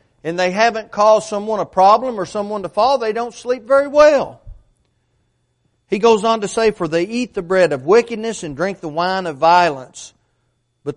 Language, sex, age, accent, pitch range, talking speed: English, male, 40-59, American, 140-195 Hz, 190 wpm